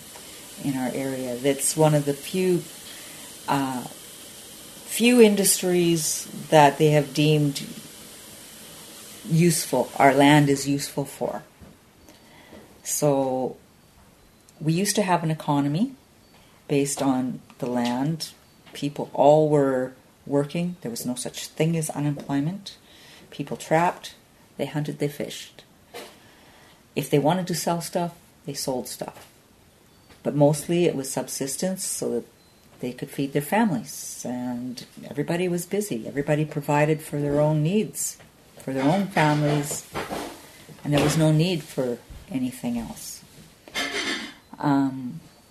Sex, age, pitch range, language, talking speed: female, 40-59, 130-165 Hz, English, 125 wpm